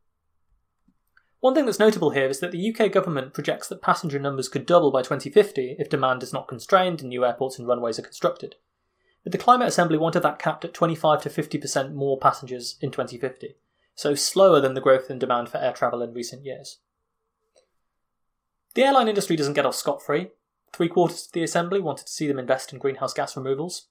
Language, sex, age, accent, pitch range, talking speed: English, male, 20-39, British, 130-175 Hz, 195 wpm